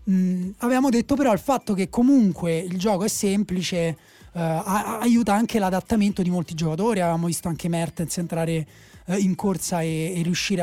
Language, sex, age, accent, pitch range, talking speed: Italian, male, 30-49, native, 165-200 Hz, 170 wpm